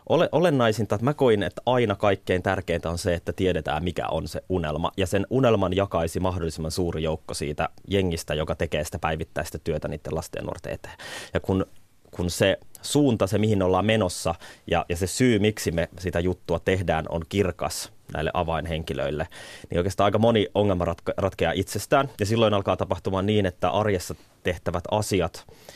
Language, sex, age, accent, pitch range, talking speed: Finnish, male, 30-49, native, 85-100 Hz, 165 wpm